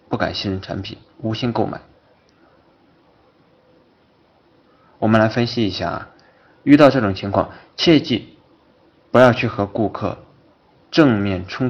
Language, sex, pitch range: Chinese, male, 95-120 Hz